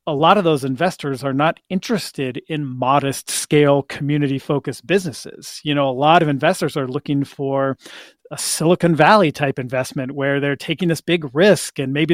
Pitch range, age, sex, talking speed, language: 135-170 Hz, 40-59, male, 180 wpm, English